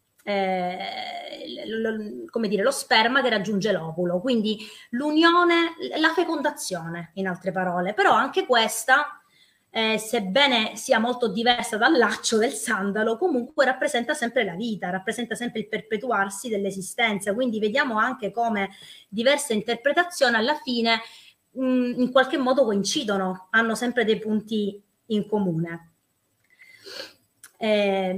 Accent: native